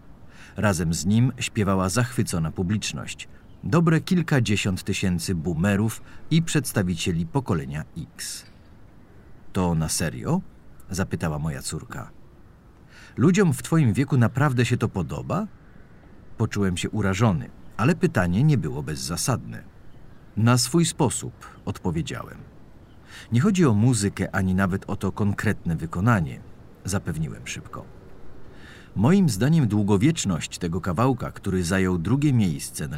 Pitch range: 95-125 Hz